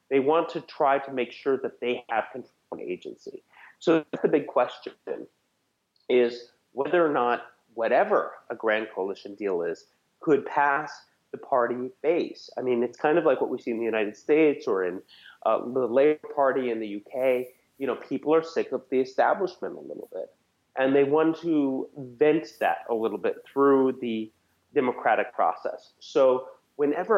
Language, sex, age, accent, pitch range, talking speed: English, male, 30-49, American, 120-180 Hz, 175 wpm